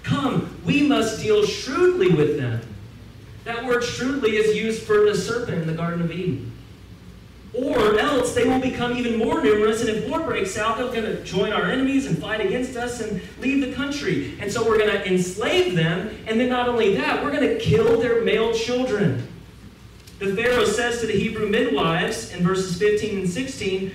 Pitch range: 165-230 Hz